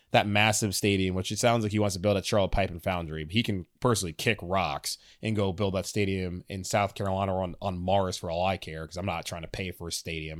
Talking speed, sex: 265 wpm, male